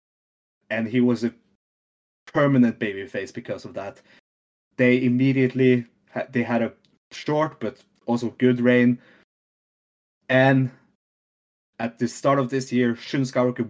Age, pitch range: 20-39, 120-145 Hz